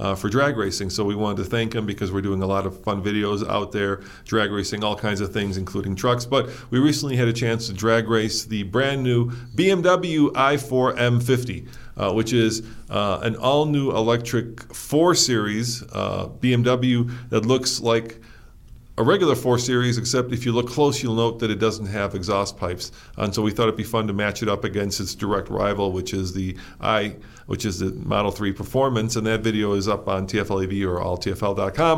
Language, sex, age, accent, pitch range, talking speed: English, male, 40-59, American, 100-120 Hz, 205 wpm